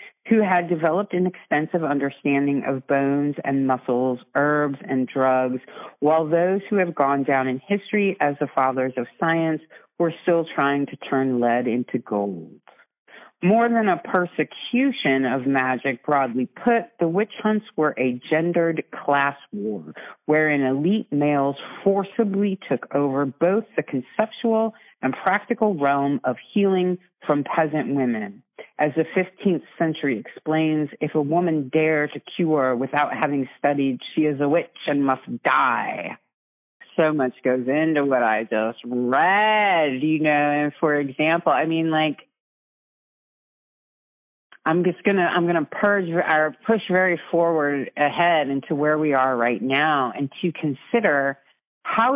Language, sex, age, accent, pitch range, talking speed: English, female, 40-59, American, 140-180 Hz, 145 wpm